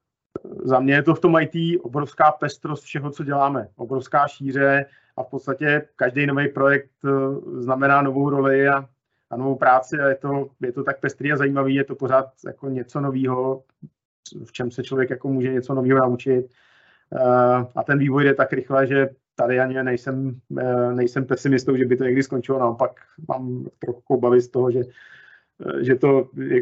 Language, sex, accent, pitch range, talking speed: Czech, male, native, 125-140 Hz, 175 wpm